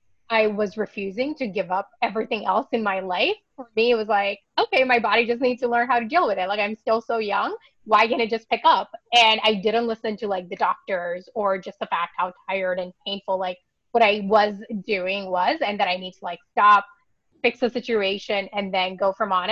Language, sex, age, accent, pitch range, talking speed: English, female, 20-39, American, 195-240 Hz, 235 wpm